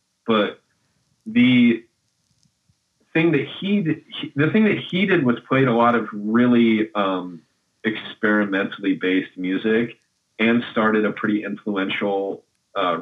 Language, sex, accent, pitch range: English, male, American, 100-120 Hz